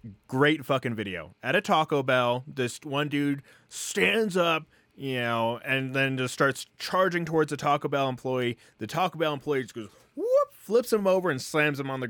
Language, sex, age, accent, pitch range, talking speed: English, male, 20-39, American, 115-150 Hz, 195 wpm